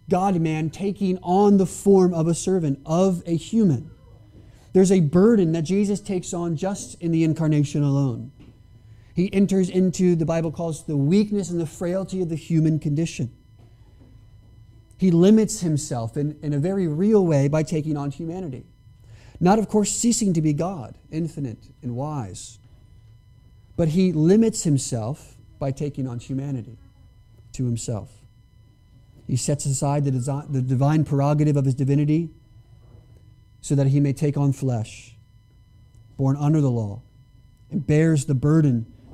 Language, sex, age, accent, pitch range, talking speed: English, male, 30-49, American, 115-165 Hz, 145 wpm